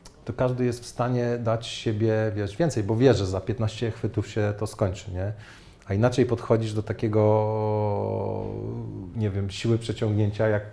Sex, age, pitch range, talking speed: male, 30-49, 100-110 Hz, 150 wpm